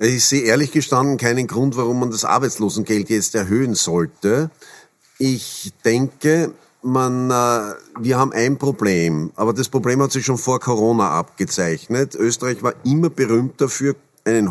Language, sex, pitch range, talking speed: German, male, 110-140 Hz, 145 wpm